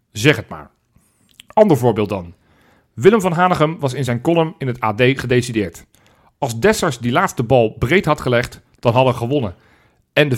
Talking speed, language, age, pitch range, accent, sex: 180 wpm, Dutch, 40-59, 115-145 Hz, Belgian, male